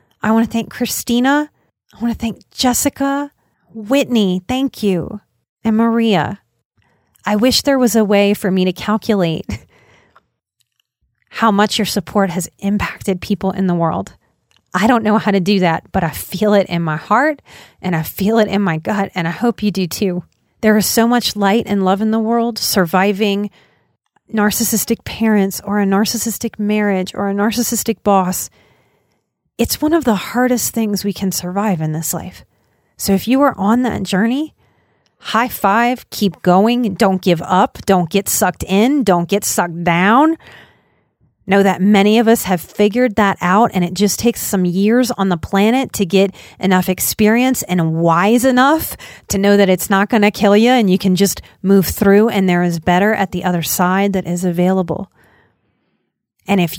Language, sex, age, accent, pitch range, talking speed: English, female, 30-49, American, 185-230 Hz, 180 wpm